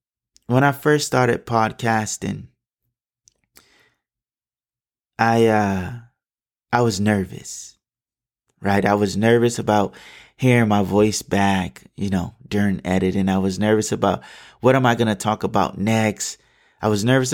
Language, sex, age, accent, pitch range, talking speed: English, male, 20-39, American, 105-130 Hz, 130 wpm